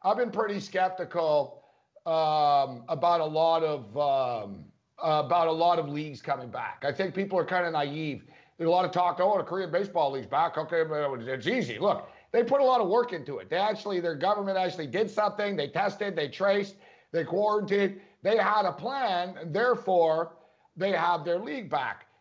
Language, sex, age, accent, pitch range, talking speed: English, male, 50-69, American, 165-205 Hz, 195 wpm